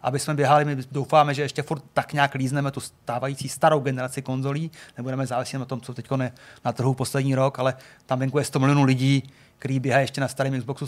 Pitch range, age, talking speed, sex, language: 130-150 Hz, 30-49, 215 wpm, male, Czech